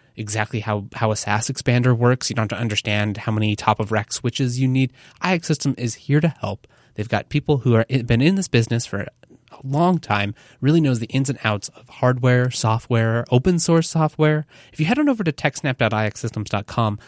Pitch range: 110-145 Hz